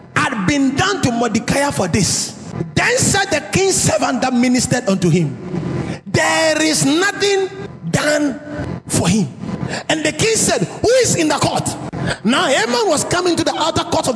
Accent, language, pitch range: Nigerian, English, 180-295 Hz